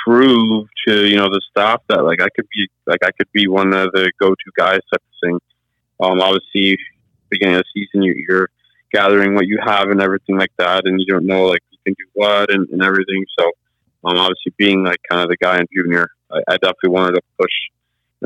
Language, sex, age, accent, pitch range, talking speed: English, male, 20-39, American, 95-100 Hz, 225 wpm